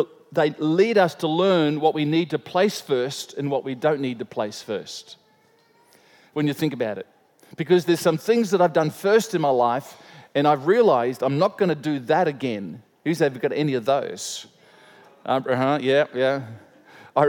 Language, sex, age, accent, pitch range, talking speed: English, male, 50-69, Australian, 145-185 Hz, 195 wpm